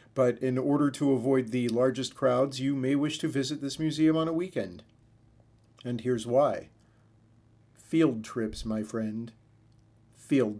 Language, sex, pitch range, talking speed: English, male, 115-140 Hz, 145 wpm